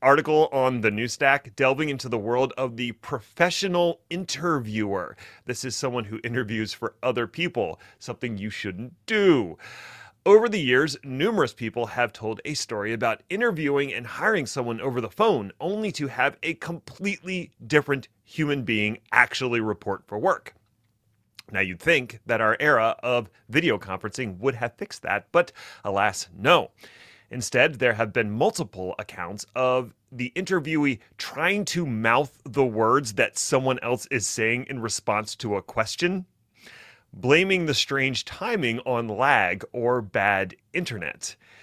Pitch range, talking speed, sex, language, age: 110-155 Hz, 150 wpm, male, English, 30-49